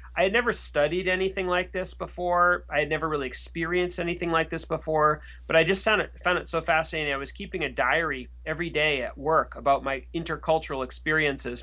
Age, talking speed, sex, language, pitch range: 30-49, 200 wpm, male, English, 135-165 Hz